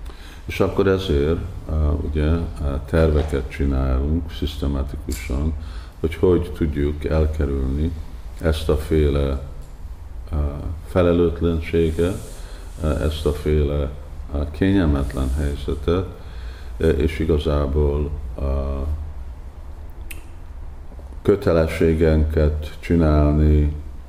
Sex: male